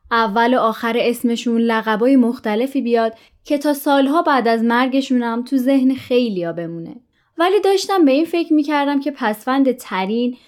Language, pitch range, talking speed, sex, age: Persian, 205-280 Hz, 150 wpm, female, 20-39